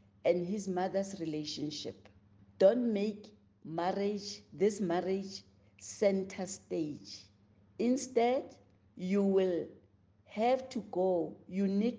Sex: female